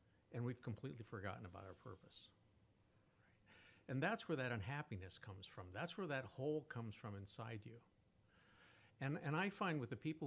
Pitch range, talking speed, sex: 105-135 Hz, 170 wpm, male